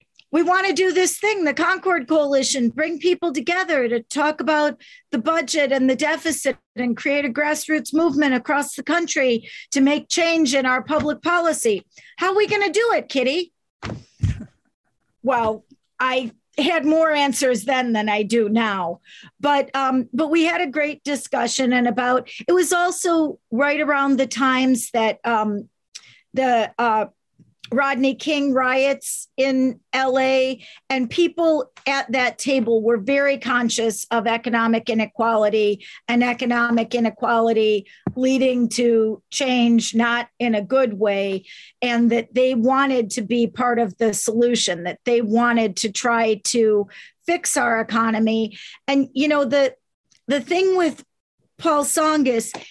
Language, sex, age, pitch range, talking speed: English, female, 50-69, 230-300 Hz, 145 wpm